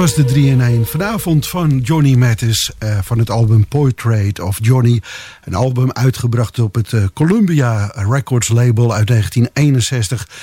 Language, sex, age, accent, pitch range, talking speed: English, male, 50-69, Dutch, 115-140 Hz, 145 wpm